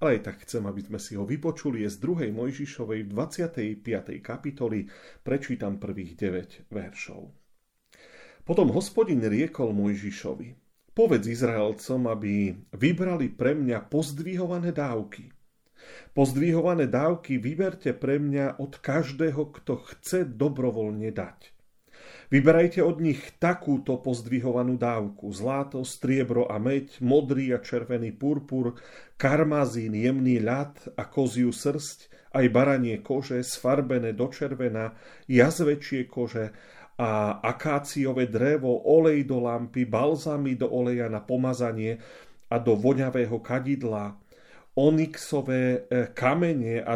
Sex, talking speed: male, 110 wpm